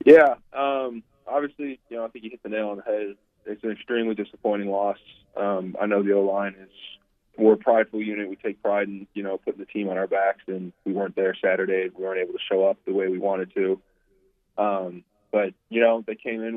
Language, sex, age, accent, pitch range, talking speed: English, male, 20-39, American, 95-110 Hz, 230 wpm